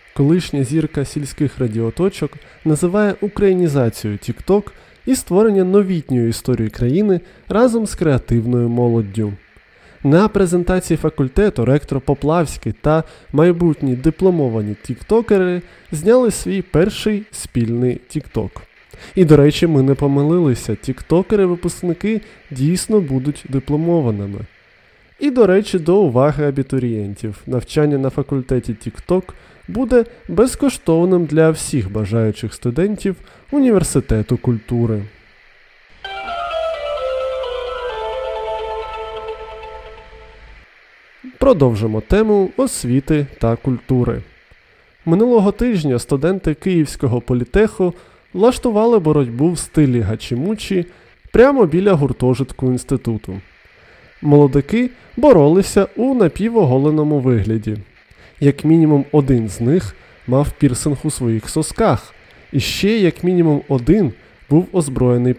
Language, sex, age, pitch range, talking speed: Ukrainian, male, 20-39, 125-200 Hz, 90 wpm